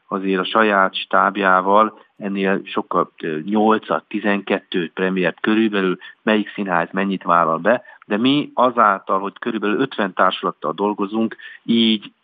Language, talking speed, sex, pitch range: Hungarian, 120 wpm, male, 95-110 Hz